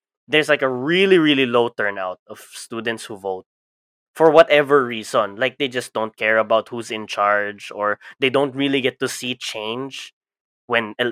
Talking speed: 175 wpm